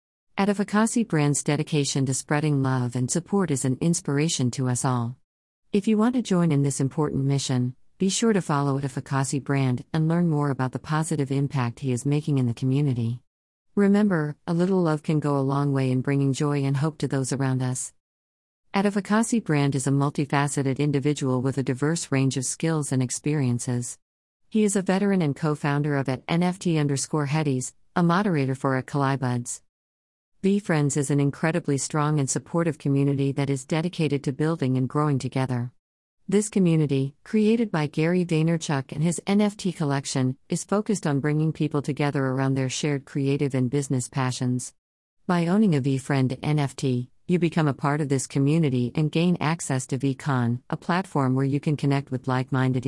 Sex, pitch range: female, 130-160 Hz